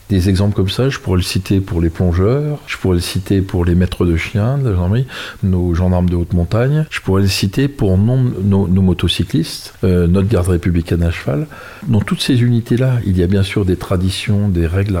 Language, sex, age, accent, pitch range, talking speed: French, male, 50-69, French, 95-120 Hz, 225 wpm